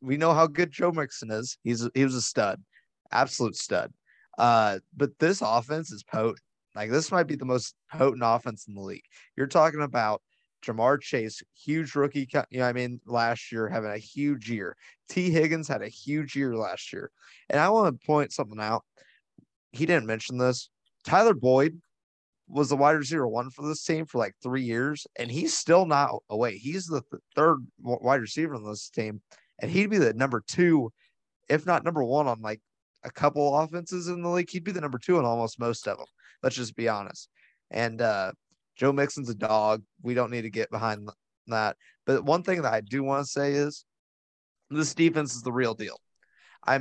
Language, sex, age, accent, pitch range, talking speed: English, male, 20-39, American, 115-155 Hz, 200 wpm